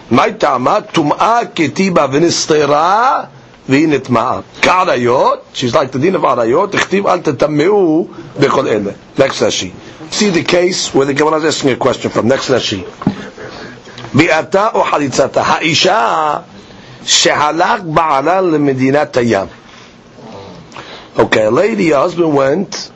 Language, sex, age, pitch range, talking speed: English, male, 50-69, 135-185 Hz, 120 wpm